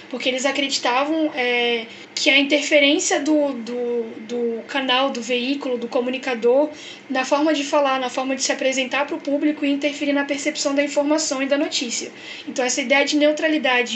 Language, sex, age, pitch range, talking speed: Portuguese, female, 10-29, 260-295 Hz, 175 wpm